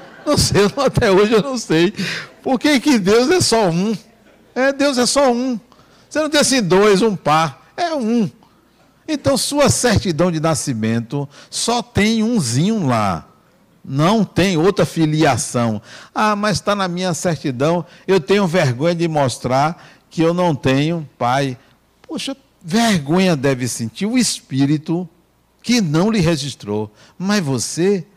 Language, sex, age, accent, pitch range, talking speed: Portuguese, male, 60-79, Brazilian, 130-210 Hz, 145 wpm